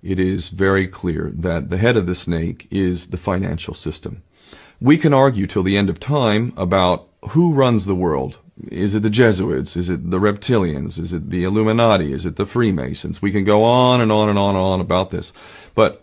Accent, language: American, Swedish